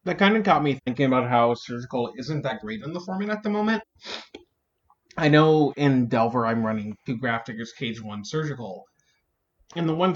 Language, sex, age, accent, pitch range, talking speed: English, male, 20-39, American, 120-155 Hz, 190 wpm